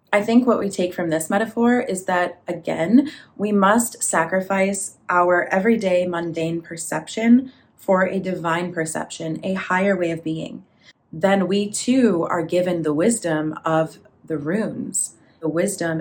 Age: 30-49